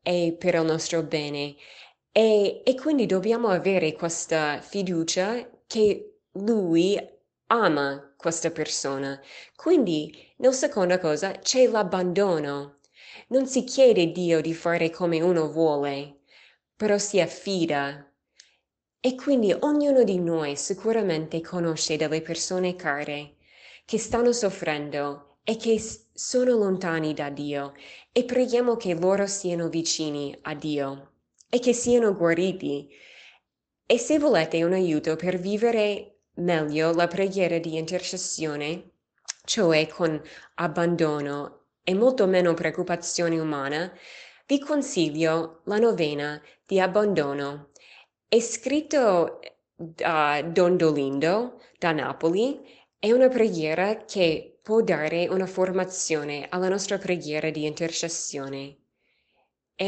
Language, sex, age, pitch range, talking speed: Italian, female, 20-39, 155-205 Hz, 115 wpm